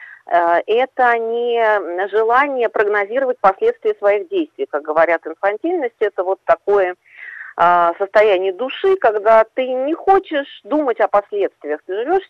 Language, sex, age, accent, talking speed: Russian, female, 40-59, native, 115 wpm